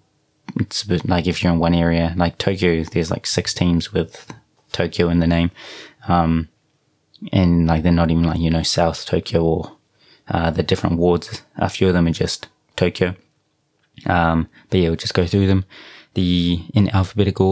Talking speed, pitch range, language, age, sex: 180 wpm, 85-95 Hz, English, 20-39, male